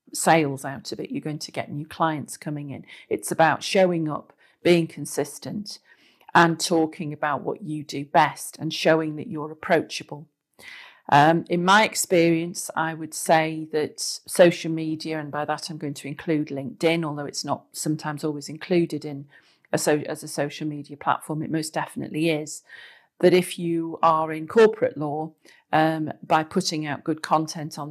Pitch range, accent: 150-170 Hz, British